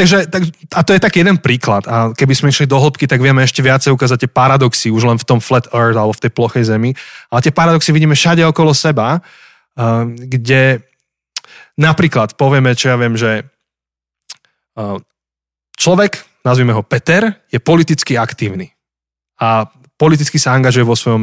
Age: 20-39